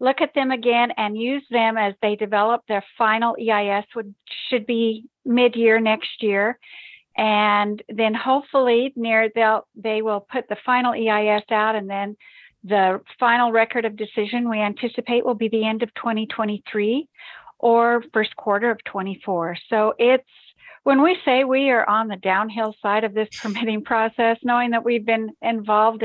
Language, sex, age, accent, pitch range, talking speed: English, female, 50-69, American, 210-250 Hz, 165 wpm